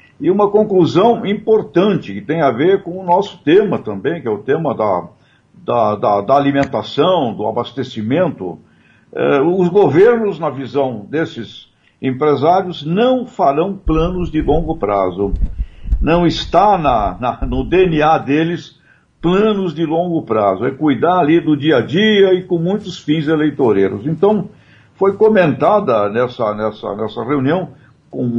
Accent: Brazilian